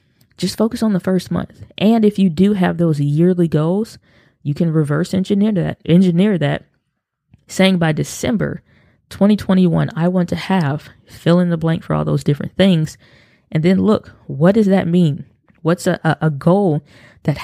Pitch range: 145-185 Hz